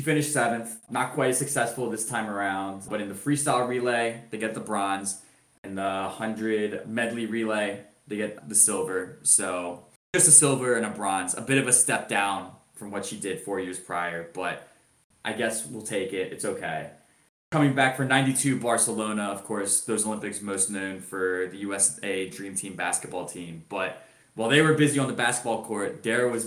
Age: 20-39